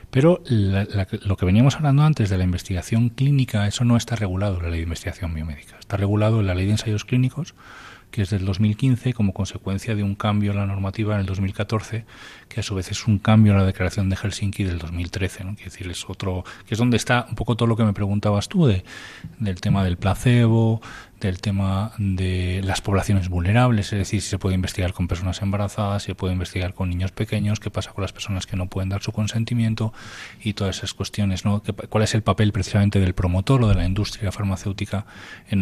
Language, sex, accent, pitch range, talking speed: Spanish, male, Spanish, 95-110 Hz, 210 wpm